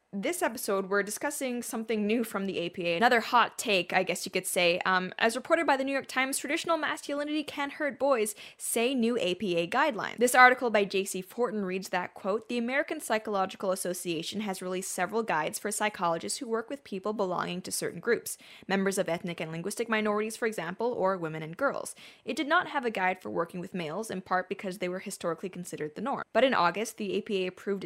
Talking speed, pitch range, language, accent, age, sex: 210 wpm, 185-245 Hz, English, American, 20-39, female